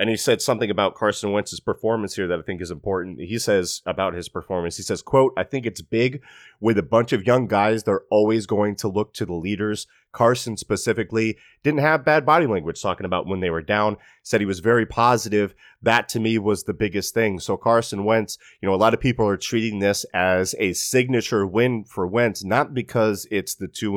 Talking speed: 220 wpm